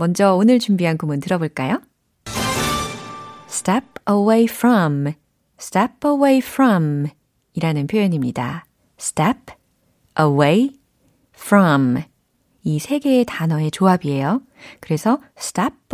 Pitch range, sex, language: 155-245 Hz, female, Korean